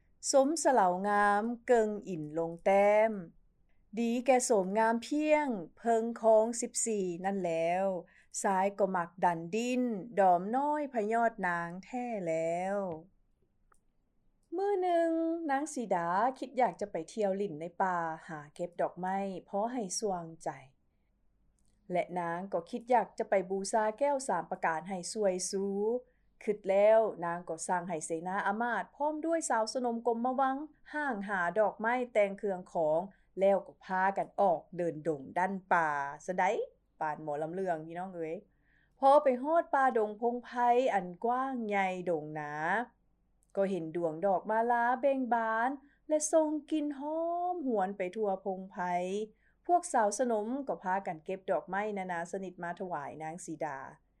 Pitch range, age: 180-245 Hz, 30-49